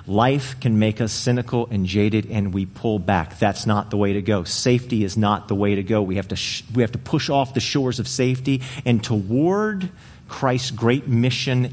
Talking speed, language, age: 215 wpm, English, 40-59